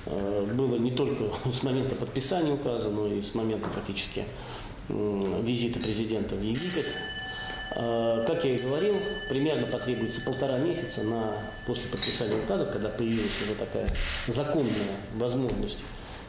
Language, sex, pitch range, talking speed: Russian, male, 110-135 Hz, 120 wpm